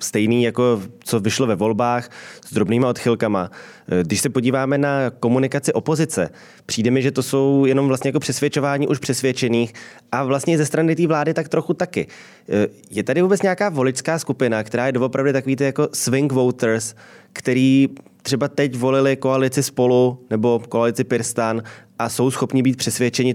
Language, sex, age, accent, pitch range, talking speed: Czech, male, 20-39, native, 110-130 Hz, 160 wpm